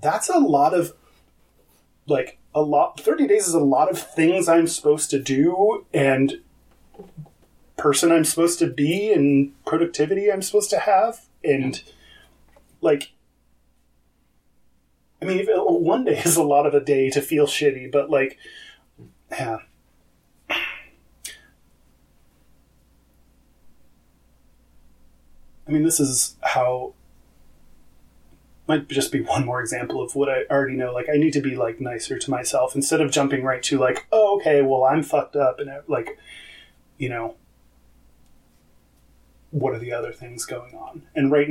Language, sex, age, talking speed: English, male, 30-49, 140 wpm